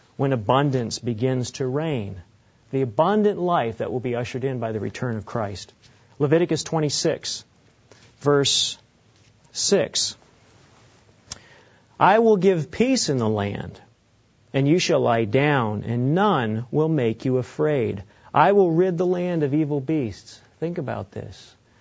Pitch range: 115-150 Hz